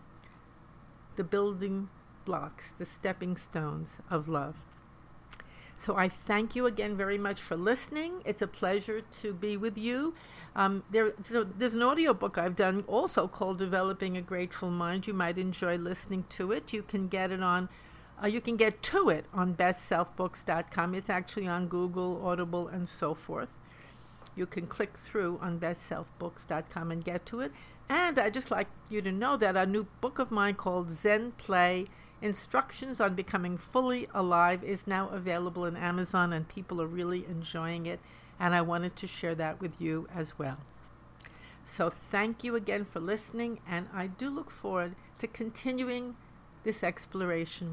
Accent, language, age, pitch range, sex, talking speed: American, English, 60-79, 175-210 Hz, female, 165 wpm